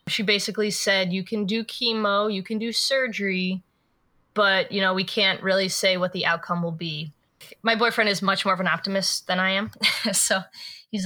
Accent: American